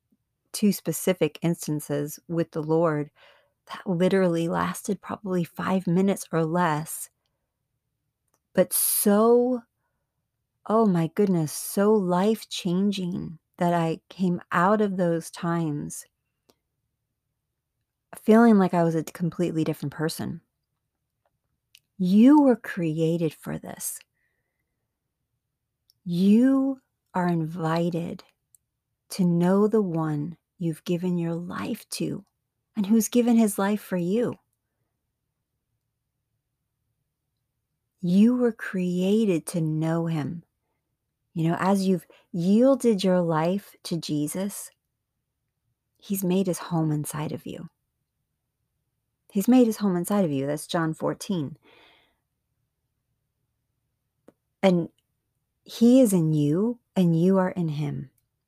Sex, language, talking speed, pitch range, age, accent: female, English, 105 wpm, 140-190 Hz, 40-59, American